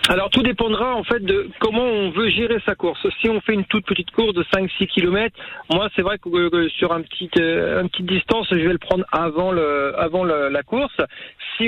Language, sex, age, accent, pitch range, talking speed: French, male, 40-59, French, 170-200 Hz, 235 wpm